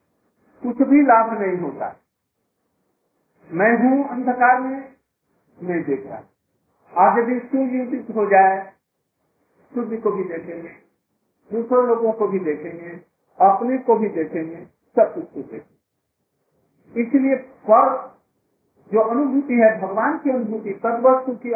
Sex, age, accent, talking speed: male, 50-69, native, 115 wpm